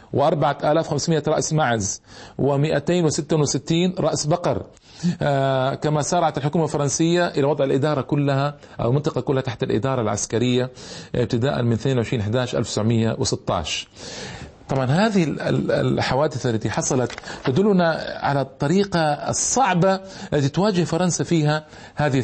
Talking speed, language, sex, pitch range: 105 wpm, Arabic, male, 130-175 Hz